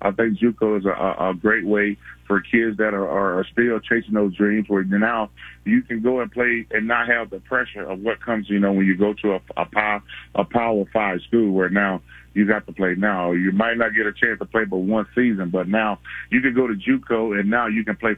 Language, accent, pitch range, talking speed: English, American, 100-120 Hz, 250 wpm